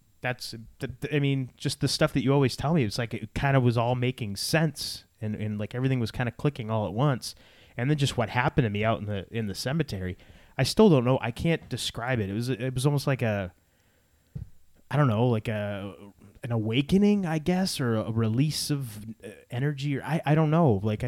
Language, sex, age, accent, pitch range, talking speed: English, male, 30-49, American, 105-130 Hz, 225 wpm